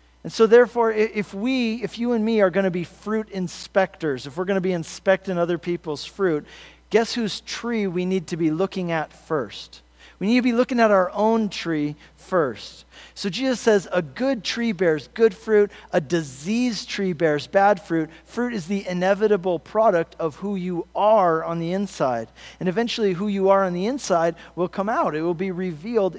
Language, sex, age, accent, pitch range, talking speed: English, male, 40-59, American, 165-215 Hz, 195 wpm